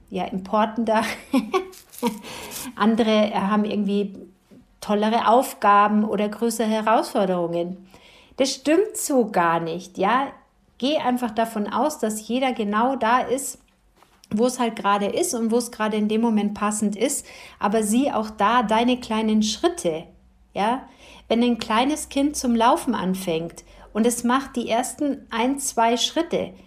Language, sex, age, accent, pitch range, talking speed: German, female, 50-69, German, 210-250 Hz, 140 wpm